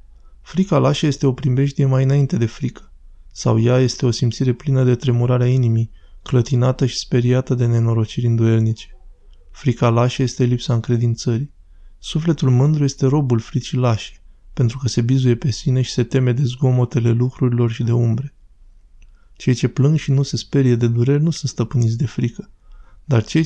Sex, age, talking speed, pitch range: male, 20-39, 170 wpm, 115-135 Hz